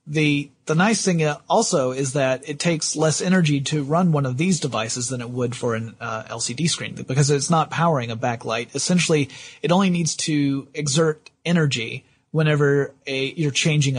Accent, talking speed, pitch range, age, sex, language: American, 180 wpm, 125-155 Hz, 30-49, male, English